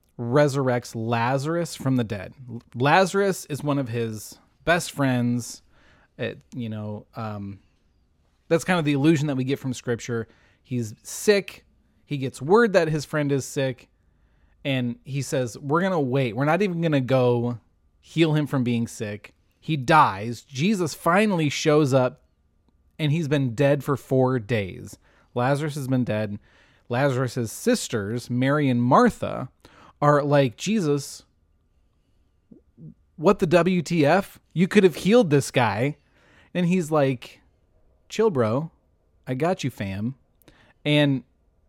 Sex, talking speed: male, 135 wpm